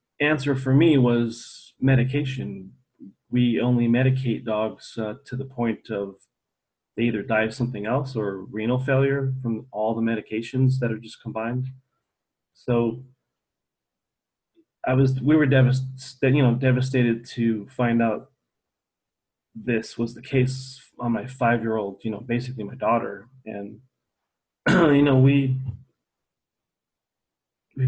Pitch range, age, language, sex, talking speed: 110-130 Hz, 30-49, English, male, 130 wpm